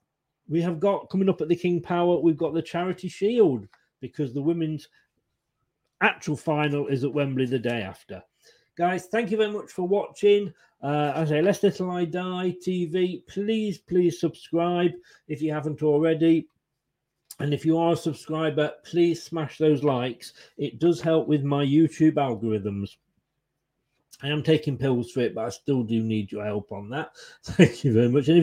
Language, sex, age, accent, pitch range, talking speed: English, male, 40-59, British, 140-180 Hz, 180 wpm